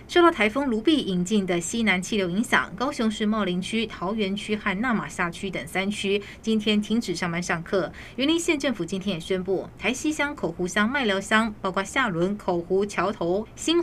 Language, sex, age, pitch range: Chinese, female, 20-39, 185-225 Hz